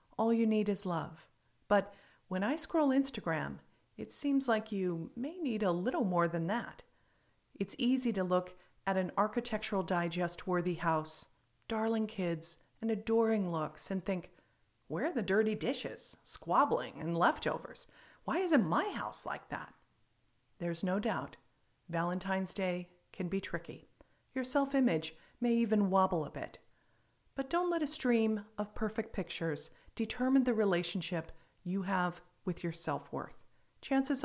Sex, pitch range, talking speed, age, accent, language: female, 170-225 Hz, 145 wpm, 40-59, American, English